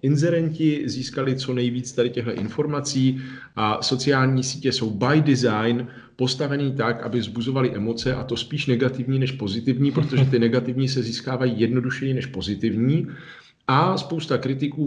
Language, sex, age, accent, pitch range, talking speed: Czech, male, 40-59, native, 100-130 Hz, 140 wpm